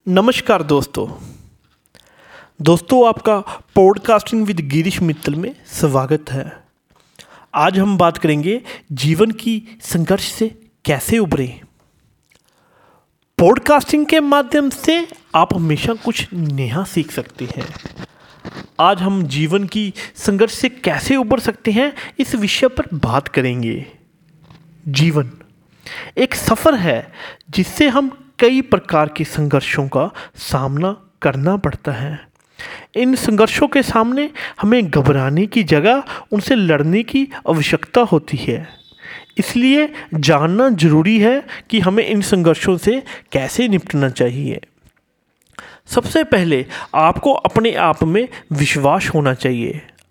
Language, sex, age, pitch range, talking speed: Hindi, male, 30-49, 155-235 Hz, 115 wpm